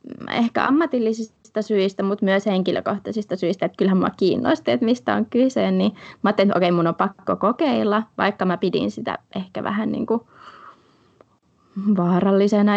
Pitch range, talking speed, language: 190-225 Hz, 150 wpm, Finnish